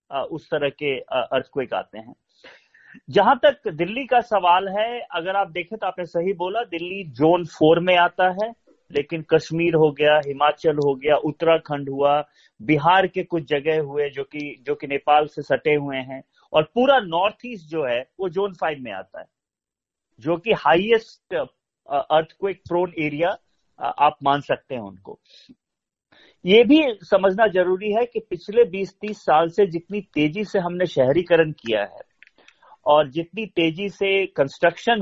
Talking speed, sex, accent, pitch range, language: 160 wpm, male, native, 155-205 Hz, Hindi